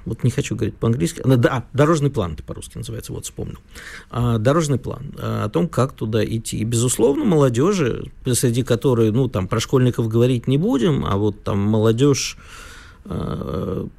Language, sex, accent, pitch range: Russian, male, native, 110-135 Hz